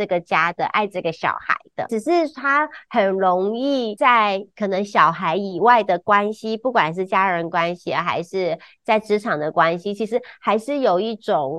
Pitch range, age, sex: 180-250 Hz, 30-49, female